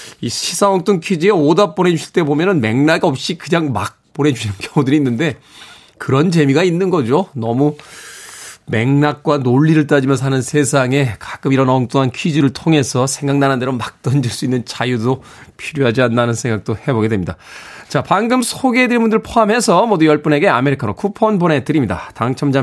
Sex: male